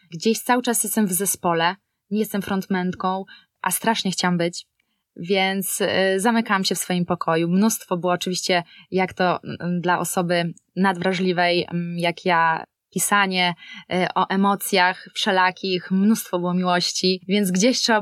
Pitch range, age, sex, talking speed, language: 180-210 Hz, 20-39, female, 130 wpm, Polish